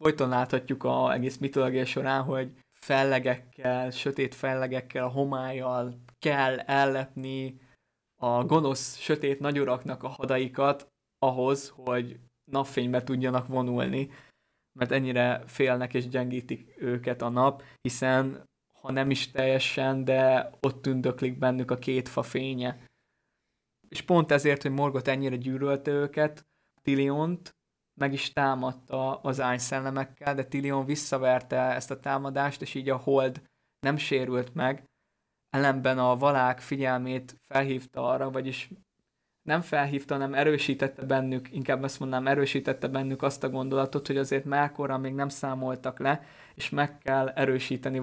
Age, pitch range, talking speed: 20-39, 130-140 Hz, 130 wpm